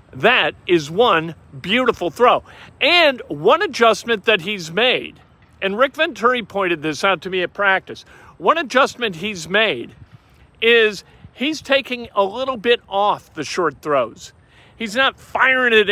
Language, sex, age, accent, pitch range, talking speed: English, male, 50-69, American, 195-240 Hz, 145 wpm